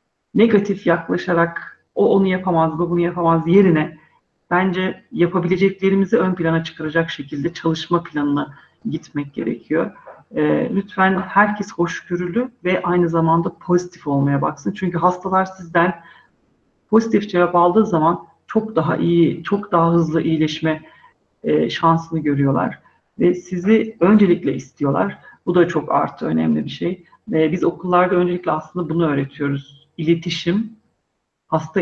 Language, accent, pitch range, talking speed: Turkish, native, 160-185 Hz, 125 wpm